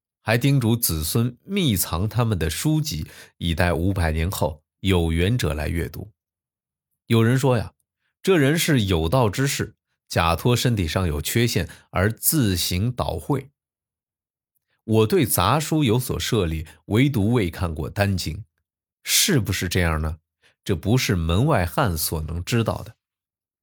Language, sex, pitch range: Chinese, male, 85-135 Hz